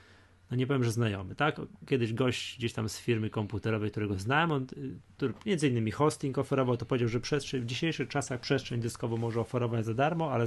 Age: 30-49